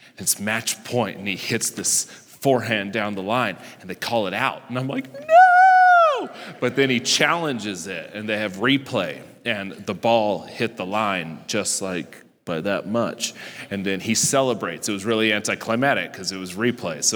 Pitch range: 100-120 Hz